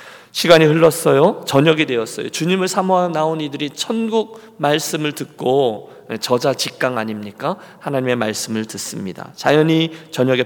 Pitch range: 130-170 Hz